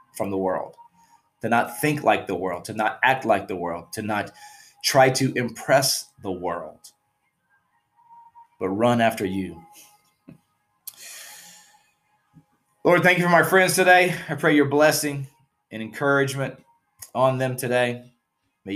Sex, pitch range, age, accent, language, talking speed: male, 115-170 Hz, 30-49, American, English, 140 wpm